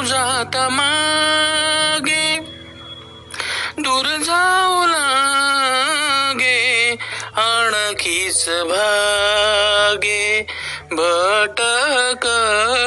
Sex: male